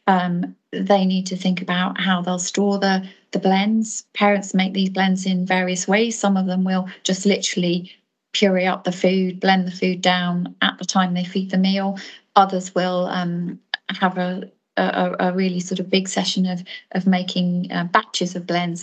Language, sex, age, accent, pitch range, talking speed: English, female, 30-49, British, 185-210 Hz, 190 wpm